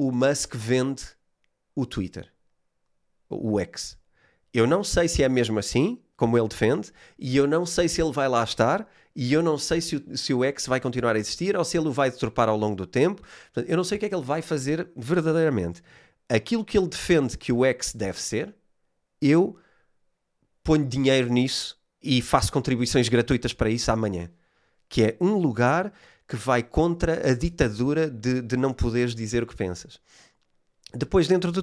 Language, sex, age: Portuguese, male, 30-49